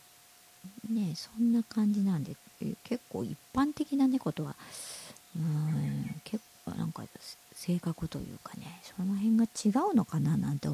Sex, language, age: male, Japanese, 50-69